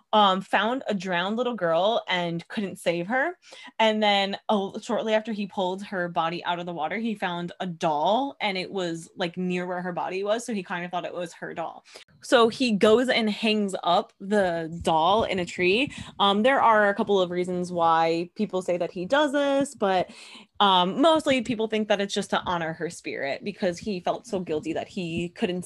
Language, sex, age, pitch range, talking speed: English, female, 20-39, 180-220 Hz, 210 wpm